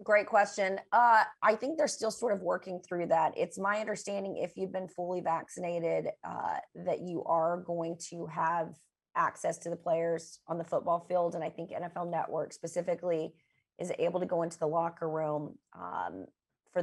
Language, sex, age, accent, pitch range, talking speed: English, female, 30-49, American, 165-185 Hz, 180 wpm